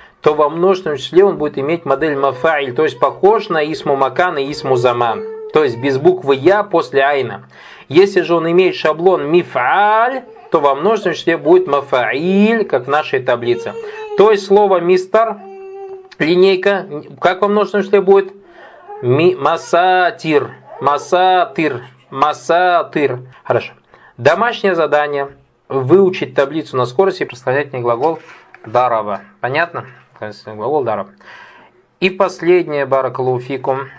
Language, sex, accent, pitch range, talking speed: Russian, male, native, 130-195 Hz, 125 wpm